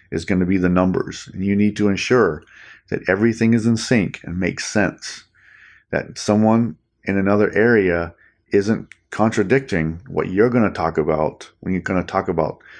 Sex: male